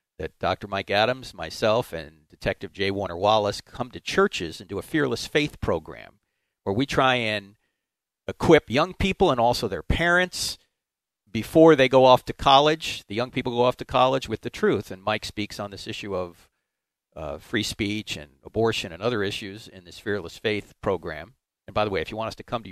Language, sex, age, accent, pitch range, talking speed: English, male, 50-69, American, 100-140 Hz, 205 wpm